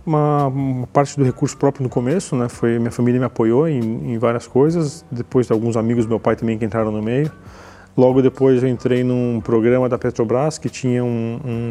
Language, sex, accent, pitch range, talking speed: Portuguese, male, Brazilian, 125-150 Hz, 210 wpm